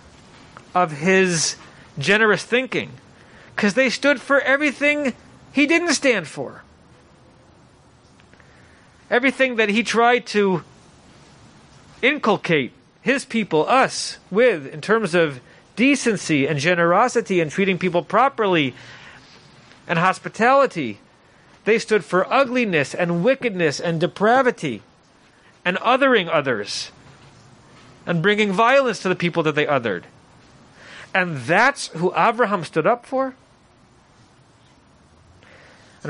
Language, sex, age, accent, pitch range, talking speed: English, male, 40-59, American, 150-230 Hz, 105 wpm